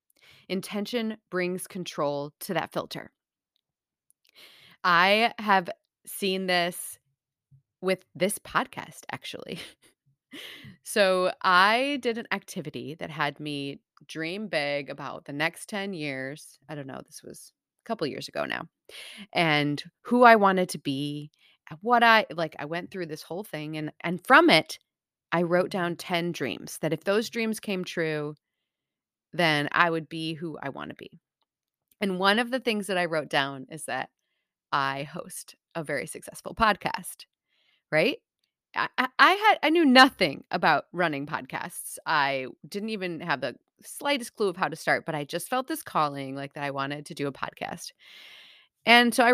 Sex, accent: female, American